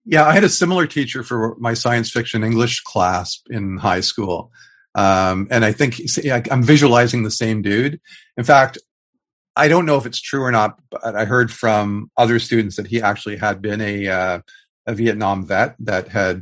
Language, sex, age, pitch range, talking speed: English, male, 50-69, 95-125 Hz, 195 wpm